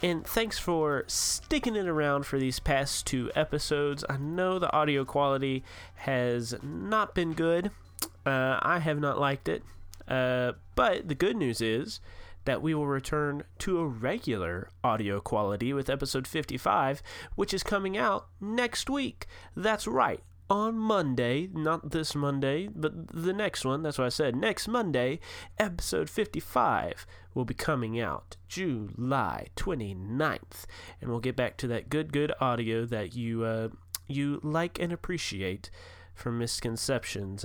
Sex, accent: male, American